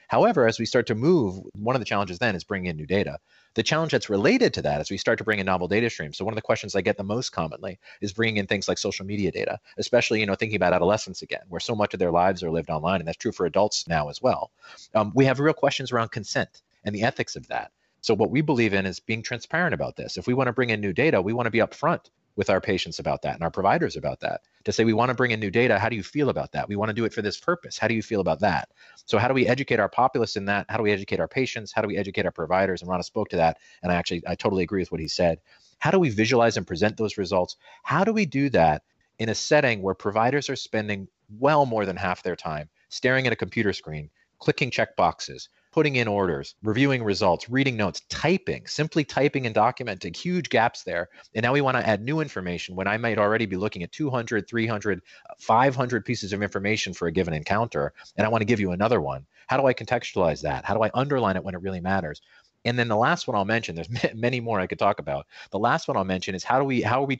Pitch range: 95-125 Hz